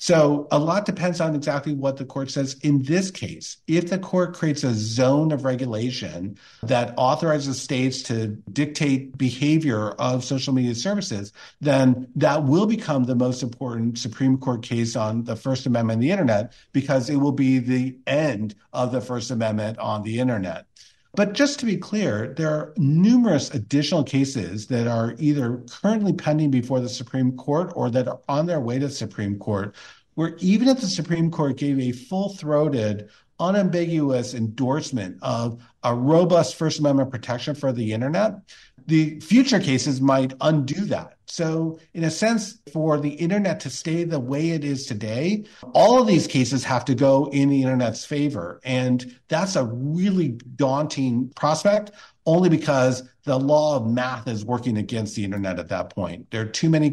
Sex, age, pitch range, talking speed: male, 50-69, 120-155 Hz, 175 wpm